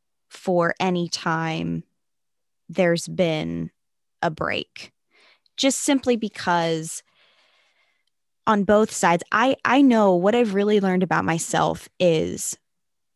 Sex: female